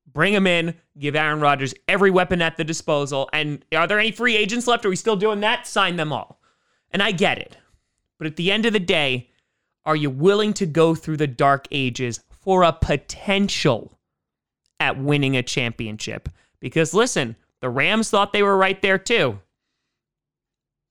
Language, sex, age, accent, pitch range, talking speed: English, male, 30-49, American, 135-195 Hz, 180 wpm